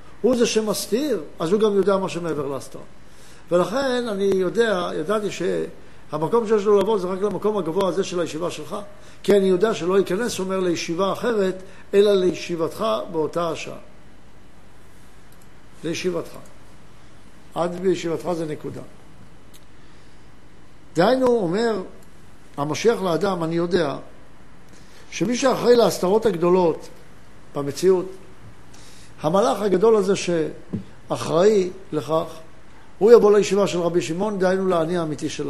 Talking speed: 120 wpm